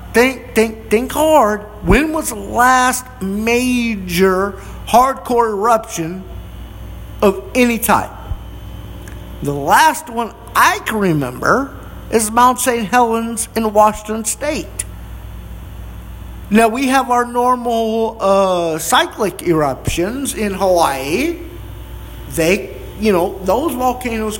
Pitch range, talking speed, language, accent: 195-265 Hz, 105 wpm, English, American